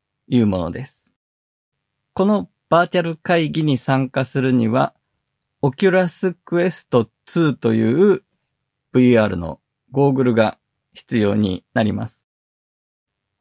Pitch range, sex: 105-140 Hz, male